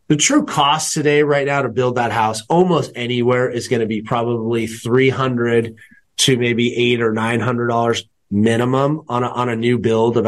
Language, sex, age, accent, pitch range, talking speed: English, male, 30-49, American, 115-145 Hz, 180 wpm